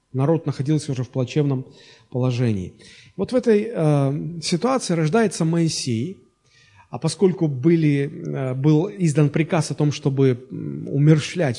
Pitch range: 130-170 Hz